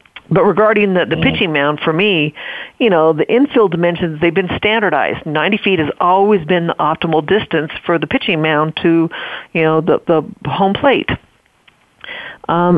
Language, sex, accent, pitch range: English, female, American, 155-190 Hz